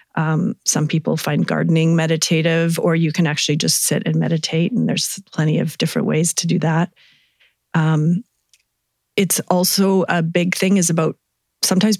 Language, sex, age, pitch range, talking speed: English, female, 40-59, 160-180 Hz, 160 wpm